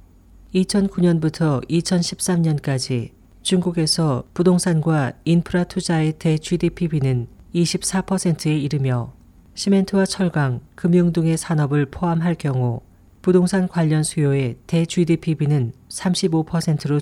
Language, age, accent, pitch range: Korean, 40-59, native, 130-175 Hz